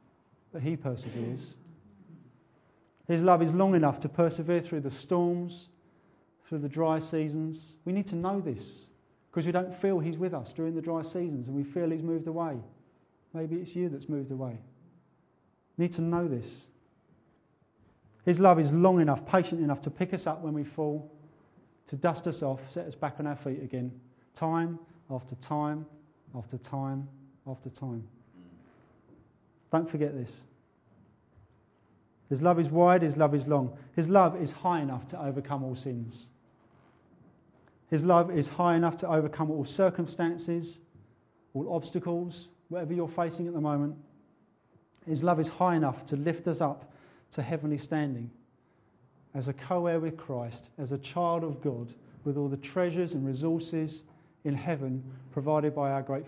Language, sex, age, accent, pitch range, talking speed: English, male, 40-59, British, 135-170 Hz, 165 wpm